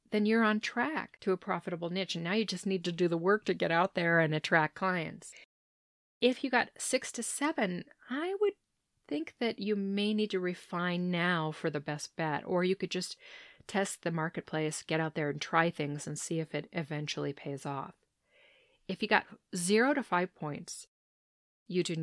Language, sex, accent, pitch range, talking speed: English, female, American, 155-205 Hz, 200 wpm